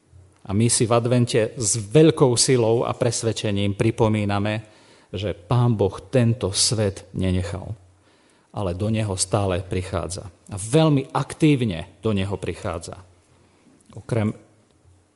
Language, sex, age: Slovak, male, 40-59